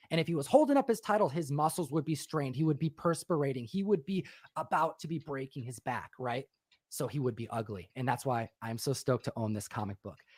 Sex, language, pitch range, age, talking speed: male, English, 125-155 Hz, 30-49, 250 wpm